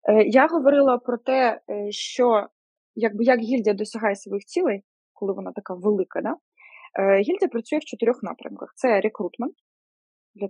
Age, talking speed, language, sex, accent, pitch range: 20-39, 145 wpm, Ukrainian, female, native, 210-275 Hz